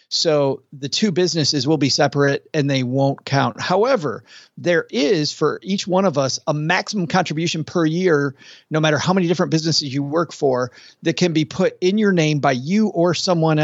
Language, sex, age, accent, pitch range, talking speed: English, male, 40-59, American, 140-170 Hz, 195 wpm